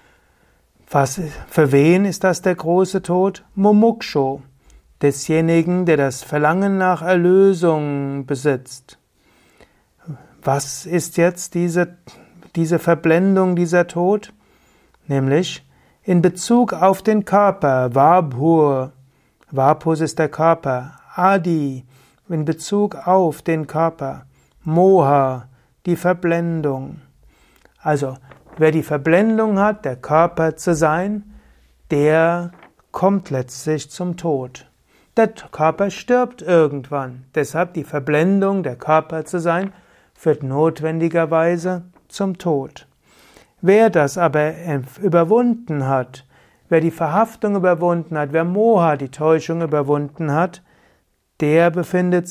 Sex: male